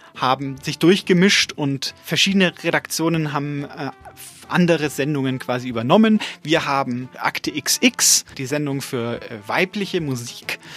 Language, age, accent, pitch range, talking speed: English, 30-49, German, 135-180 Hz, 125 wpm